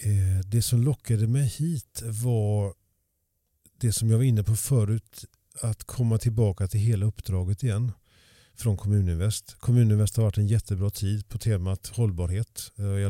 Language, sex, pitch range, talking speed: Swedish, male, 100-120 Hz, 145 wpm